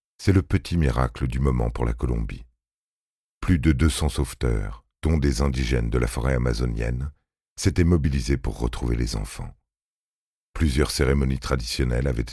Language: French